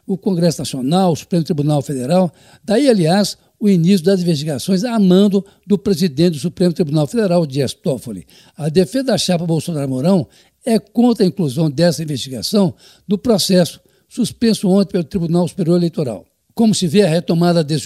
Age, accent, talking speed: 60-79, Brazilian, 170 wpm